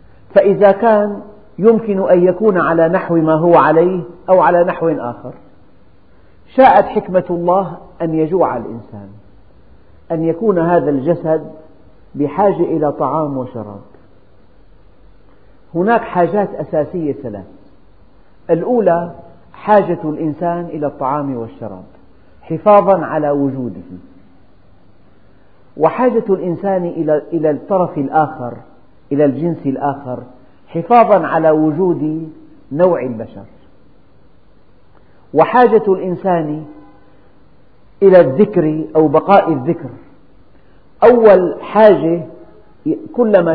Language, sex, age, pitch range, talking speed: Arabic, male, 50-69, 135-180 Hz, 90 wpm